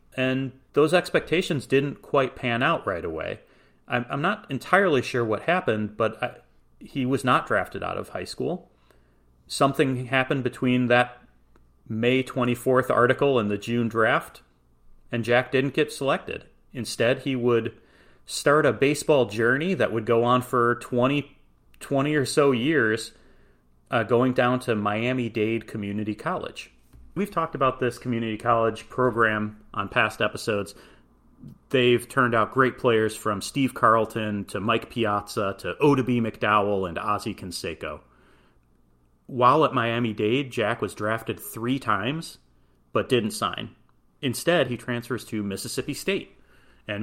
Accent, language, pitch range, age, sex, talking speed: American, English, 105-130 Hz, 30-49, male, 140 wpm